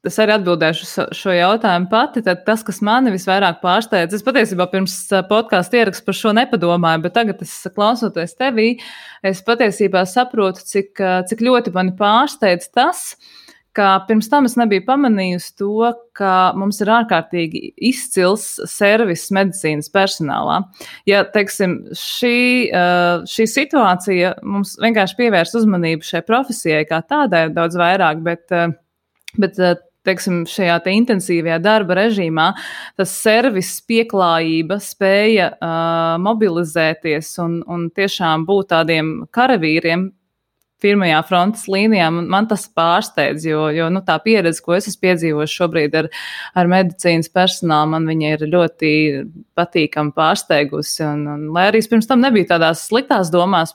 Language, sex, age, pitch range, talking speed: English, female, 20-39, 165-210 Hz, 135 wpm